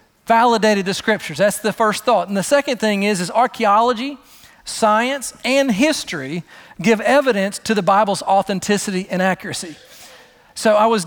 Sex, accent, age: male, American, 40-59